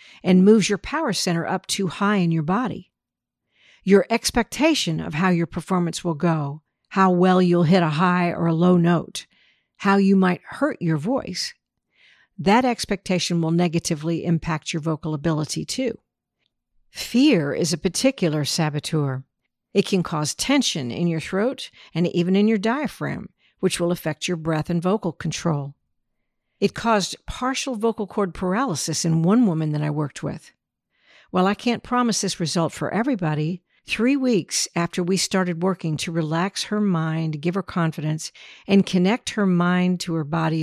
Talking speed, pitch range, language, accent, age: 160 wpm, 165-200 Hz, English, American, 50-69